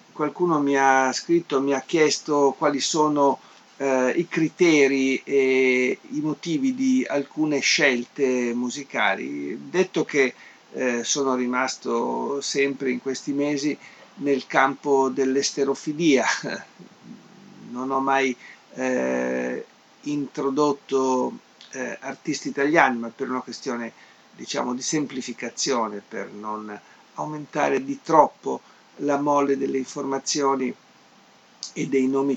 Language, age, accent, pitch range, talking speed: Italian, 50-69, native, 125-145 Hz, 110 wpm